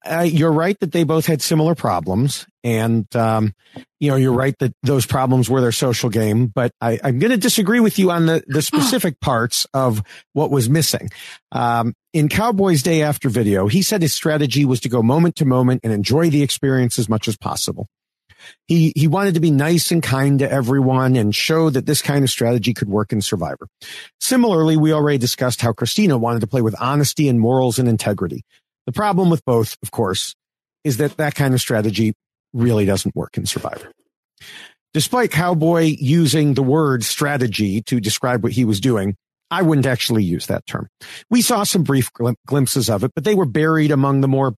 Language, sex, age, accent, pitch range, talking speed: English, male, 50-69, American, 120-155 Hz, 200 wpm